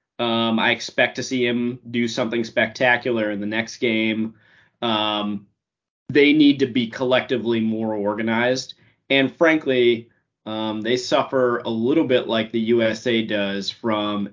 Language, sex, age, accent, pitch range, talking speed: English, male, 30-49, American, 105-130 Hz, 140 wpm